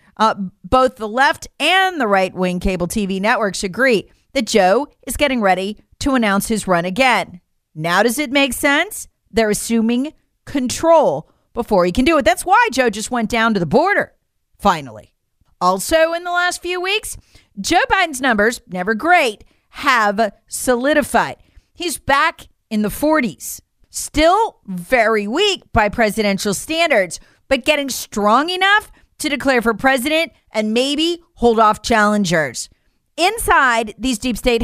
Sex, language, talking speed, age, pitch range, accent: female, English, 145 wpm, 40-59, 210-305 Hz, American